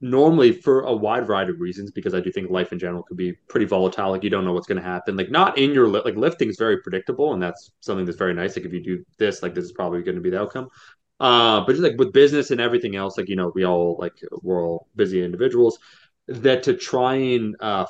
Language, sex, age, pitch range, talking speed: English, male, 30-49, 90-125 Hz, 270 wpm